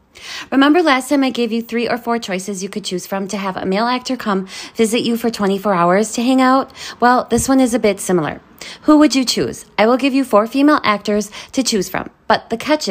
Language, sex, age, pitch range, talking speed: English, female, 20-39, 185-250 Hz, 240 wpm